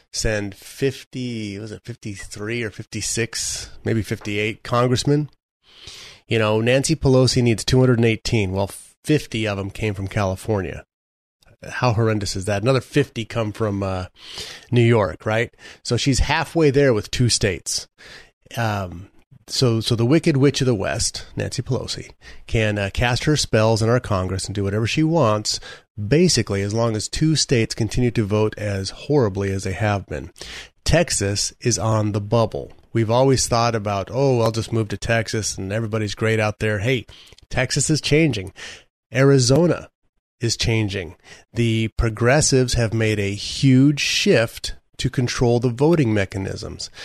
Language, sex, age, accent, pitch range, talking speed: English, male, 30-49, American, 105-125 Hz, 155 wpm